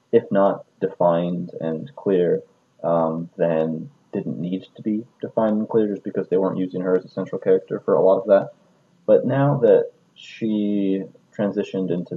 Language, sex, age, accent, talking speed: English, male, 30-49, American, 175 wpm